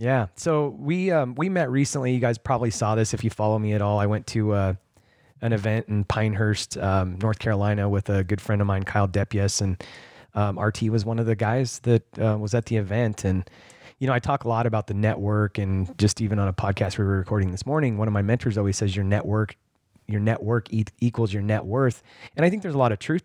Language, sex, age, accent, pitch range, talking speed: English, male, 30-49, American, 105-120 Hz, 250 wpm